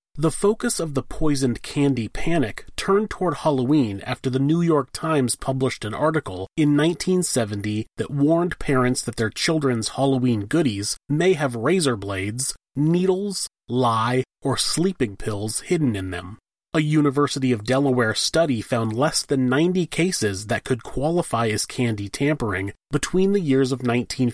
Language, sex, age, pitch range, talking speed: English, male, 30-49, 115-155 Hz, 155 wpm